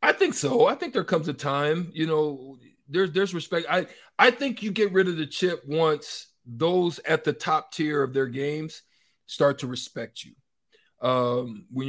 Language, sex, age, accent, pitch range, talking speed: English, male, 40-59, American, 125-155 Hz, 190 wpm